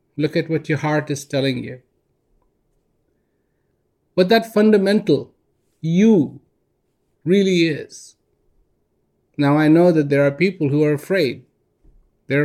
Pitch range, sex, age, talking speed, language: 135-180 Hz, male, 50-69, 120 wpm, English